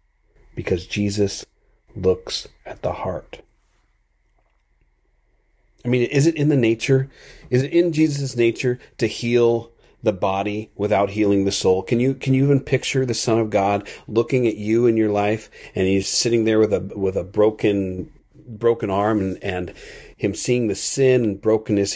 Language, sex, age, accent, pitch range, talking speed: English, male, 40-59, American, 95-115 Hz, 165 wpm